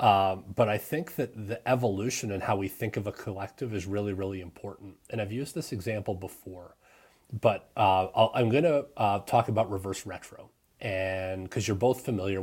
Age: 30-49